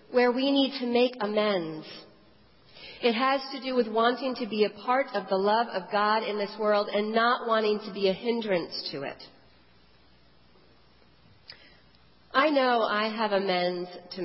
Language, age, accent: English, 40-59, American